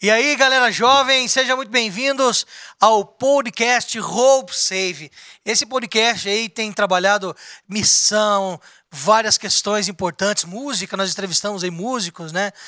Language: Portuguese